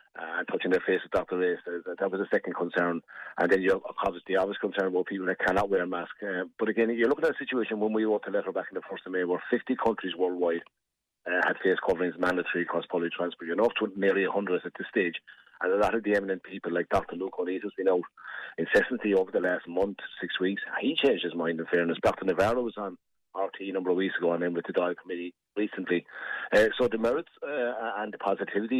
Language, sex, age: English, male, 30-49